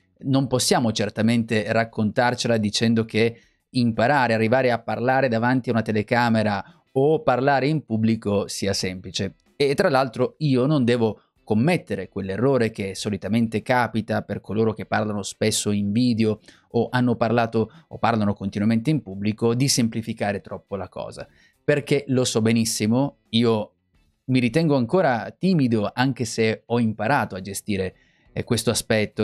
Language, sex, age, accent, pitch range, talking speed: Italian, male, 30-49, native, 110-130 Hz, 140 wpm